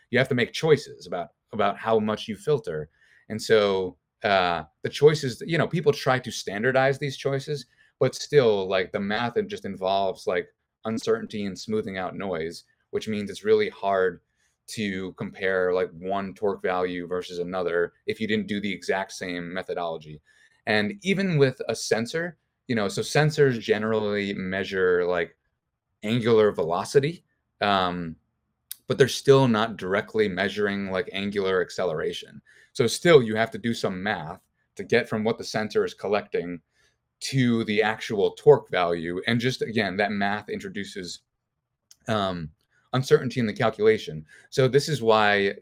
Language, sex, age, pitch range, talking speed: English, male, 30-49, 95-145 Hz, 155 wpm